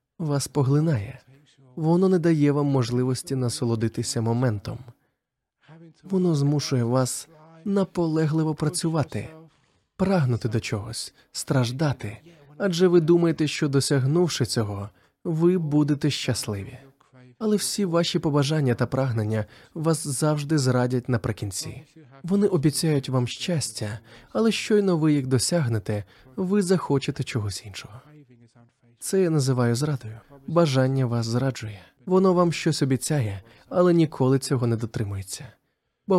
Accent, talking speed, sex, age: native, 110 wpm, male, 20-39